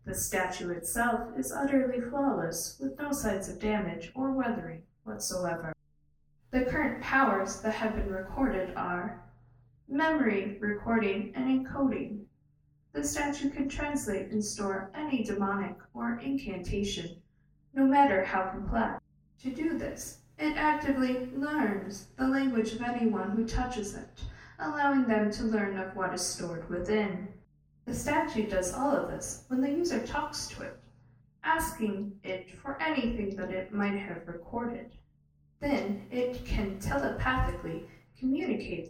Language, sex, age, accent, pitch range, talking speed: English, female, 10-29, American, 185-260 Hz, 135 wpm